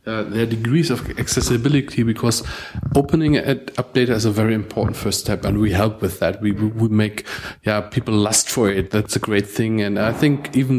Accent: German